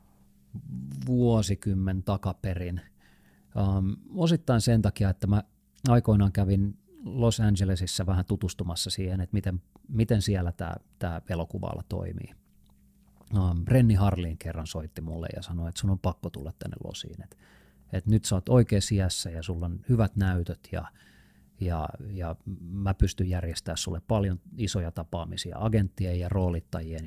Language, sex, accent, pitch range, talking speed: Finnish, male, native, 85-105 Hz, 135 wpm